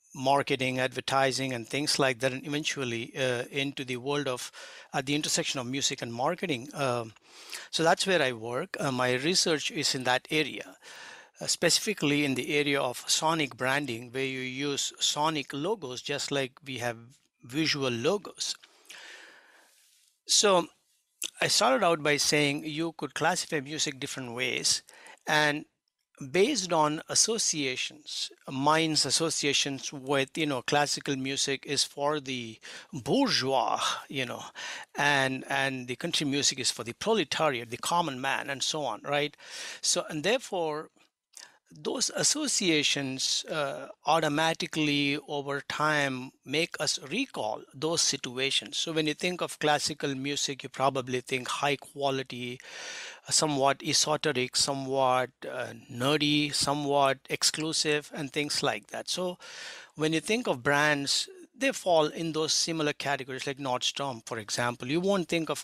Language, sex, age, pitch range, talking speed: English, male, 60-79, 135-155 Hz, 140 wpm